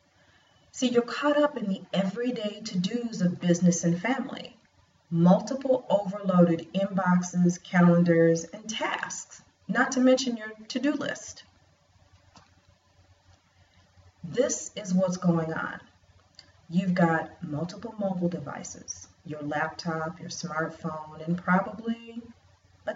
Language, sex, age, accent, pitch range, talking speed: English, female, 40-59, American, 155-215 Hz, 110 wpm